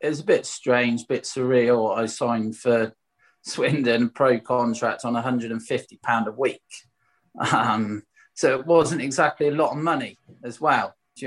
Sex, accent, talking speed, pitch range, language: male, British, 160 wpm, 110-135 Hz, English